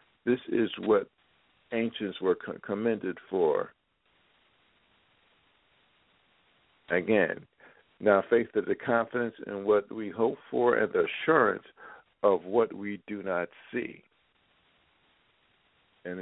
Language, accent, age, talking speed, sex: English, American, 50-69, 105 wpm, male